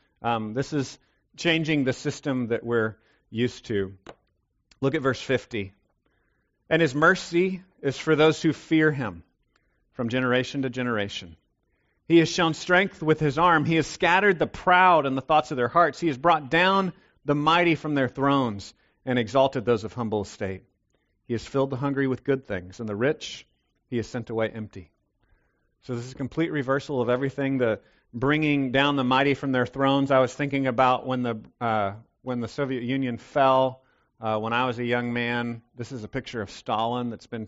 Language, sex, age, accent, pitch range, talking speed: English, male, 40-59, American, 110-140 Hz, 190 wpm